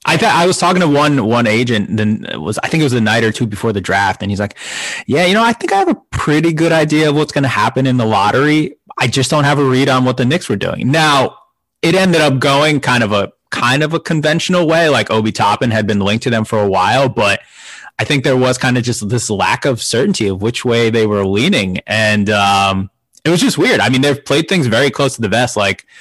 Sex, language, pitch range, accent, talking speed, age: male, English, 105-140 Hz, American, 270 wpm, 20-39